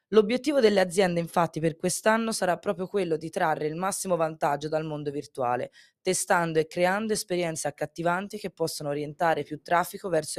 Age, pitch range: 20-39, 160-200 Hz